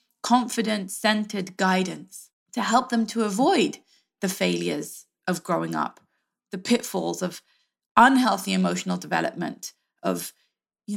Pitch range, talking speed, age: 195-255 Hz, 110 wpm, 20-39